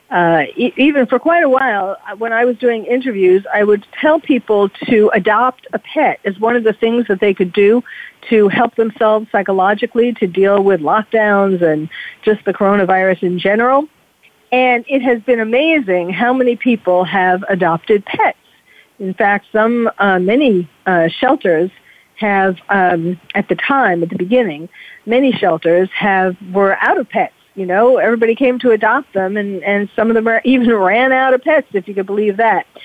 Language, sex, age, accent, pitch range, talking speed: English, female, 50-69, American, 195-245 Hz, 180 wpm